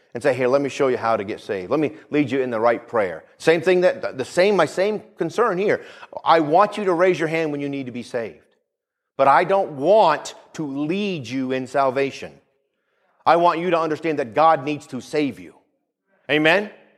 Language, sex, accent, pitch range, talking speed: English, male, American, 180-270 Hz, 220 wpm